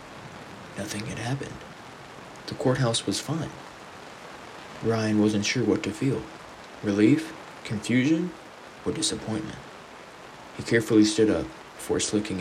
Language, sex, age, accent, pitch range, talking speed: English, male, 20-39, American, 100-115 Hz, 110 wpm